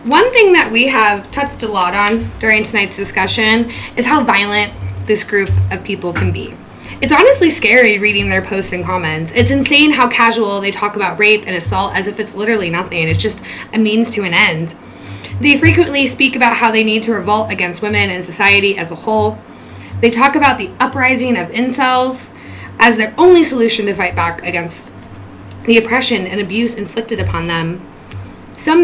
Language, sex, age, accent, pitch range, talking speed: English, female, 20-39, American, 180-245 Hz, 185 wpm